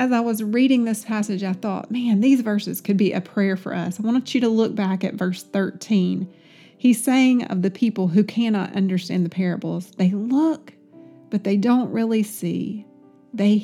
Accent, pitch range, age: American, 190-240 Hz, 40-59